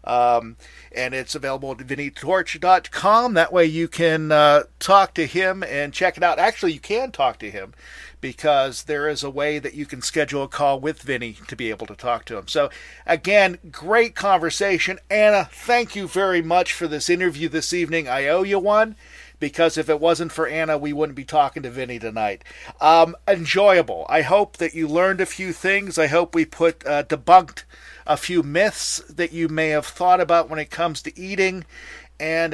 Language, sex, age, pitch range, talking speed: English, male, 50-69, 145-180 Hz, 195 wpm